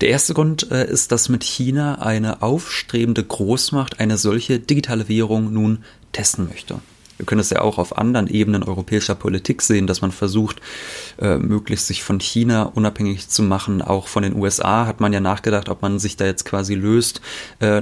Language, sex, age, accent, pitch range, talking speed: German, male, 30-49, German, 100-120 Hz, 185 wpm